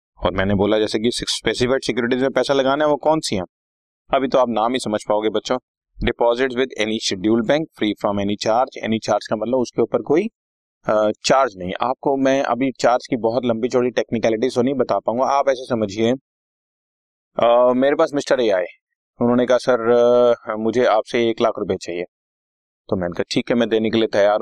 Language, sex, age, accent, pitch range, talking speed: Hindi, male, 30-49, native, 105-155 Hz, 195 wpm